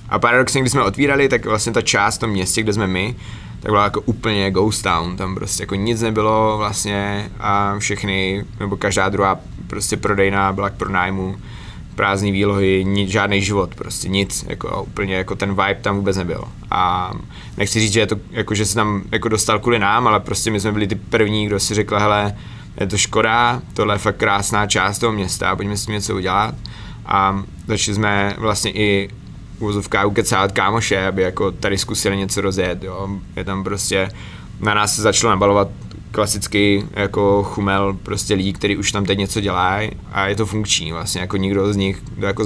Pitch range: 100-105 Hz